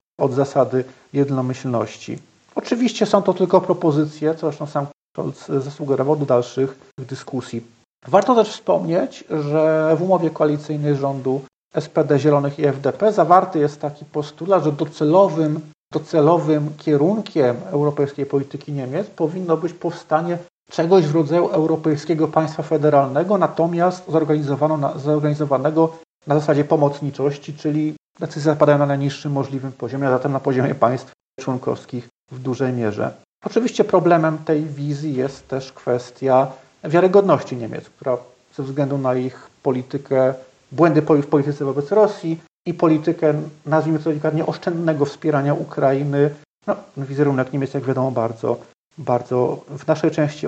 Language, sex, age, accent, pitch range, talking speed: Polish, male, 40-59, native, 135-160 Hz, 130 wpm